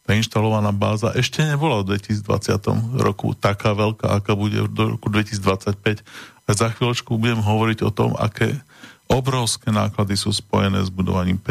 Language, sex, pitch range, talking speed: Slovak, male, 105-125 Hz, 150 wpm